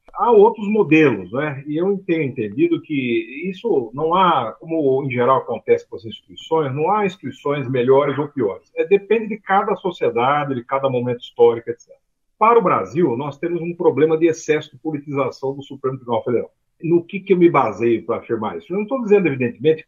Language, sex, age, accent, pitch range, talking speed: Portuguese, male, 50-69, Brazilian, 135-195 Hz, 195 wpm